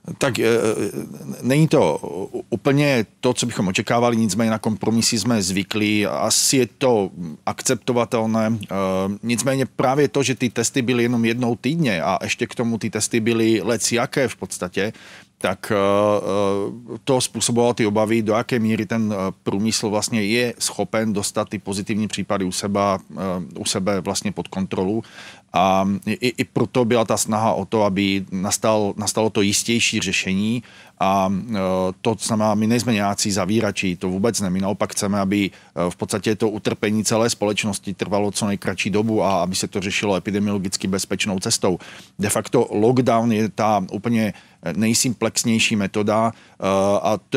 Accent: native